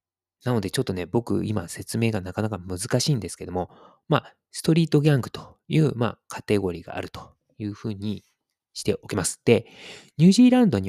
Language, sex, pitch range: Japanese, male, 100-165 Hz